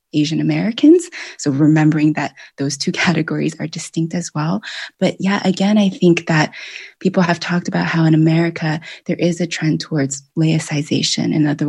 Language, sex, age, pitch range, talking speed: English, female, 20-39, 155-185 Hz, 170 wpm